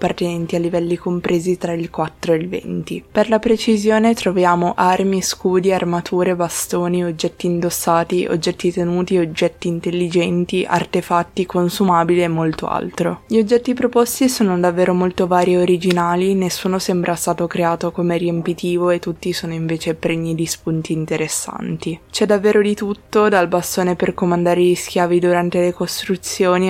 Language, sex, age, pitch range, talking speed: Italian, female, 20-39, 165-185 Hz, 145 wpm